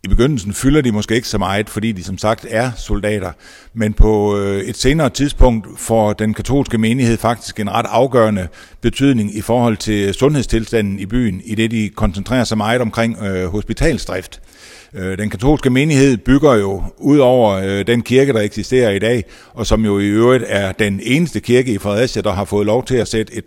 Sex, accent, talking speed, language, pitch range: male, native, 190 wpm, Danish, 100-125 Hz